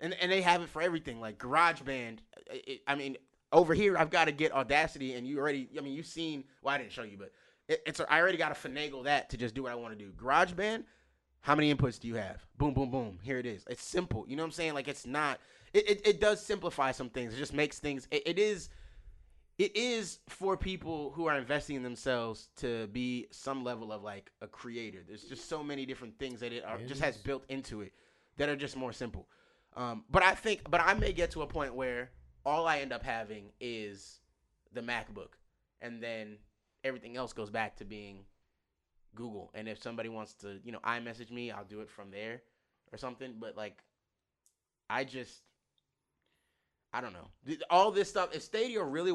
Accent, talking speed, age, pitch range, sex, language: American, 220 wpm, 20-39, 110-160 Hz, male, English